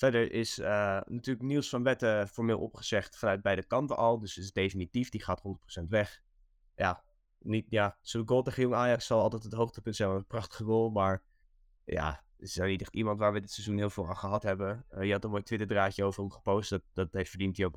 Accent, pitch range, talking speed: Dutch, 95-115 Hz, 225 wpm